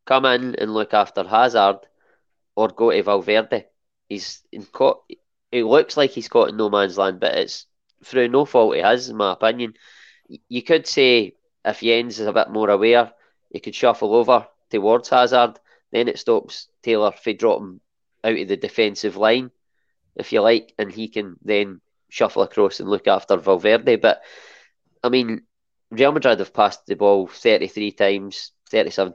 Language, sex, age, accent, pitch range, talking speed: English, male, 20-39, British, 105-130 Hz, 175 wpm